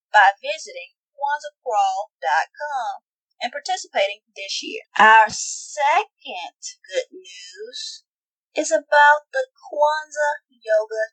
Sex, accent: female, American